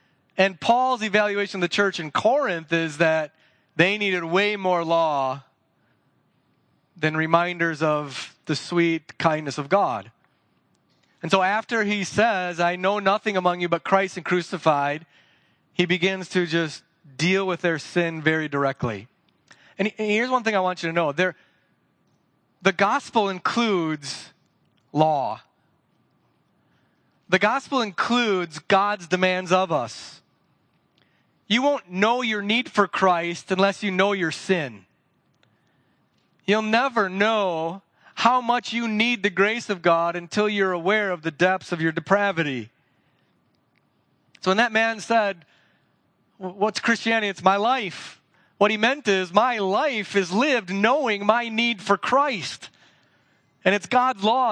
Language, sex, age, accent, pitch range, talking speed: English, male, 30-49, American, 165-210 Hz, 140 wpm